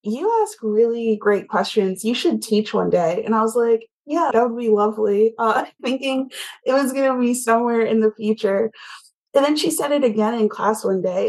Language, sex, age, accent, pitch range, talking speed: English, female, 20-39, American, 200-225 Hz, 220 wpm